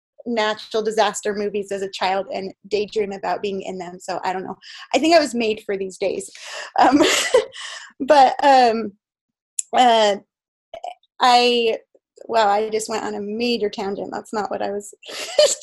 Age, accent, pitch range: 20-39, American, 205-255 Hz